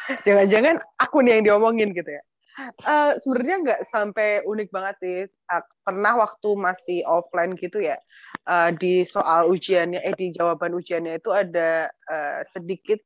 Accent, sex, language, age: native, female, Indonesian, 20-39